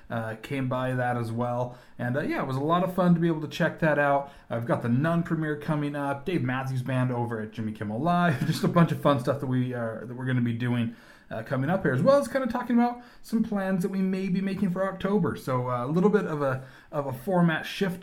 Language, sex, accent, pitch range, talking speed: English, male, American, 120-170 Hz, 275 wpm